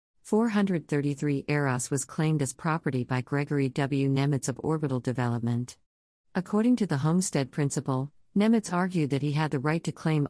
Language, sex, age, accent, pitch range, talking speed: English, female, 50-69, American, 130-160 Hz, 155 wpm